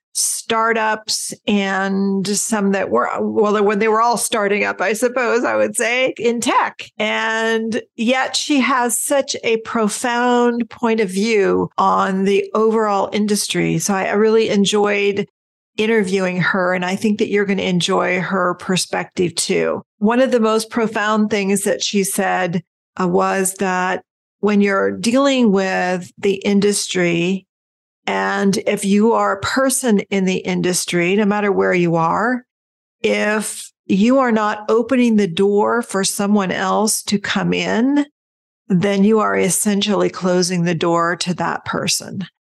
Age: 40-59